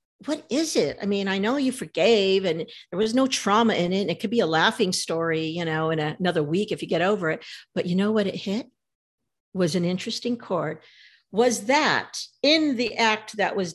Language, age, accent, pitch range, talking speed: English, 50-69, American, 185-240 Hz, 225 wpm